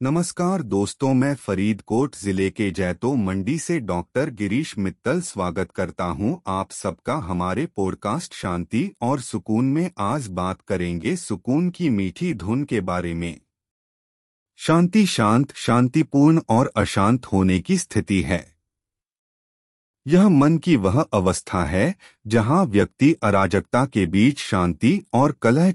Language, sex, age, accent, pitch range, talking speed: Hindi, male, 30-49, native, 95-140 Hz, 130 wpm